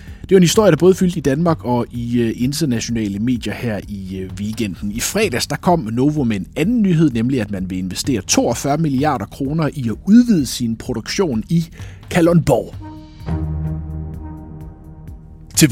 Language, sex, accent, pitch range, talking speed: Danish, male, native, 105-165 Hz, 155 wpm